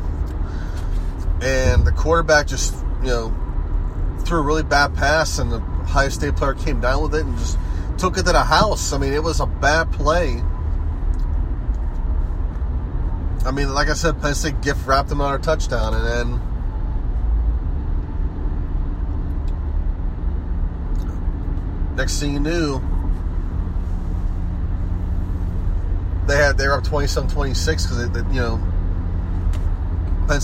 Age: 30-49